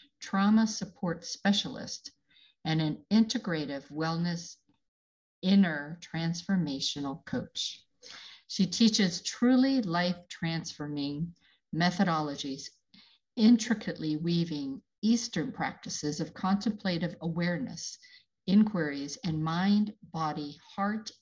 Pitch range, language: 155-210 Hz, English